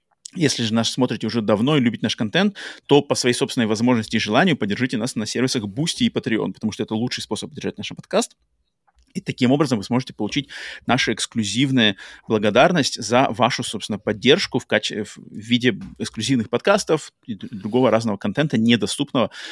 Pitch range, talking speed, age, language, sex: 110-145 Hz, 170 wpm, 30-49, Russian, male